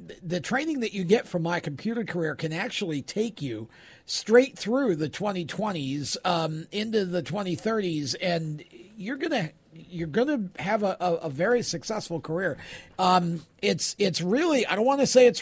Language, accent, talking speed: English, American, 170 wpm